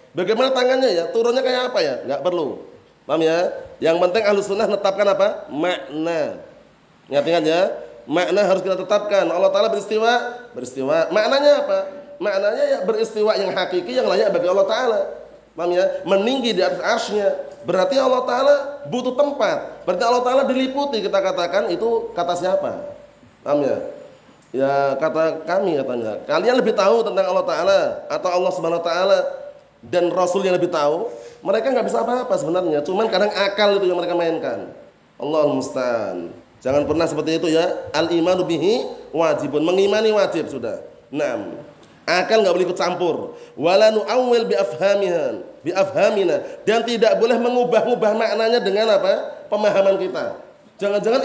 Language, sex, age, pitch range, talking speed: Indonesian, male, 30-49, 180-255 Hz, 145 wpm